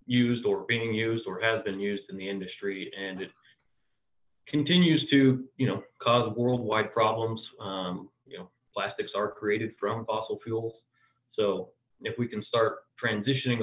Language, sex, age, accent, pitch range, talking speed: English, male, 30-49, American, 100-120 Hz, 155 wpm